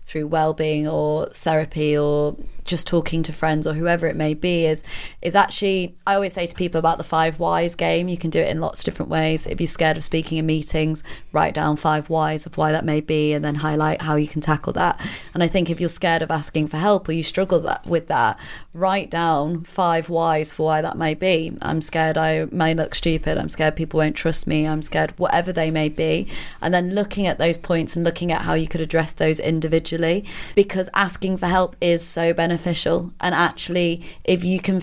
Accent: British